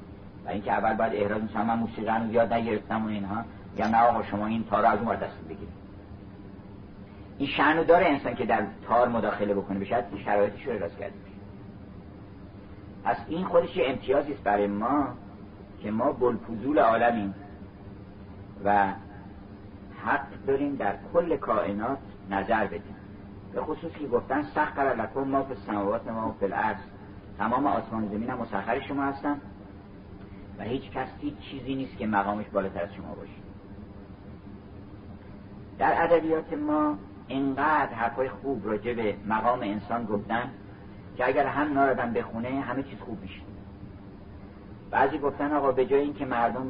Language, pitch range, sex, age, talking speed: Persian, 100-115 Hz, male, 50-69, 140 wpm